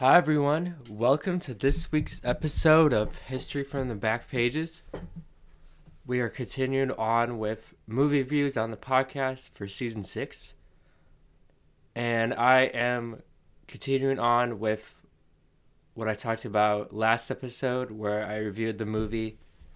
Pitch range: 105-130 Hz